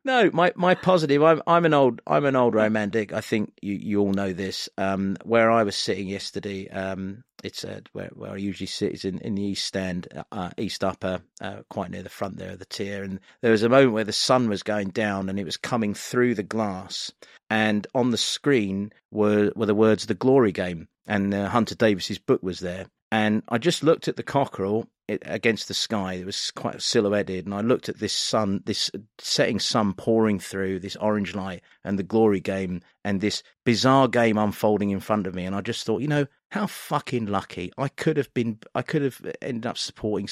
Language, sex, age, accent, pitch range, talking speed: English, male, 30-49, British, 95-125 Hz, 220 wpm